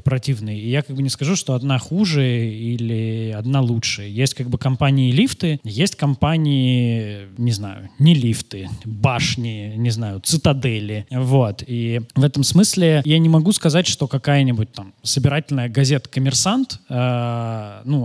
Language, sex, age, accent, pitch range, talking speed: Russian, male, 20-39, native, 120-145 Hz, 145 wpm